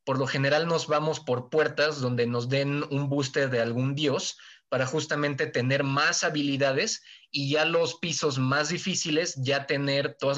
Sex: male